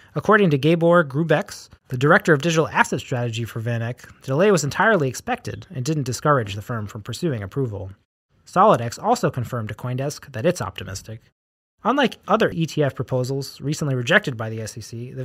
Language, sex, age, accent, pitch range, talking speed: English, male, 30-49, American, 115-165 Hz, 170 wpm